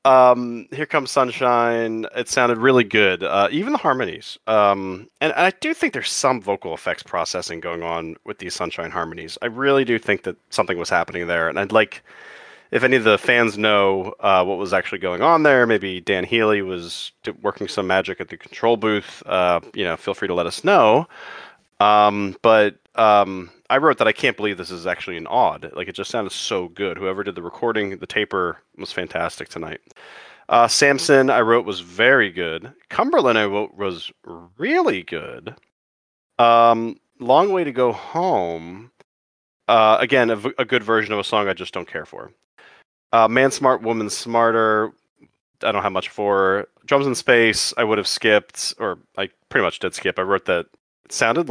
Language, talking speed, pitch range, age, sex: English, 190 wpm, 95-120 Hz, 30-49, male